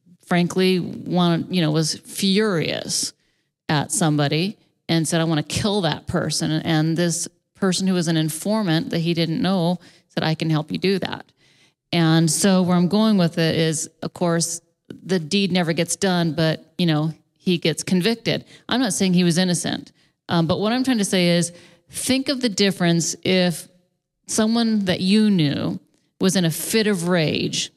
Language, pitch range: English, 165-190 Hz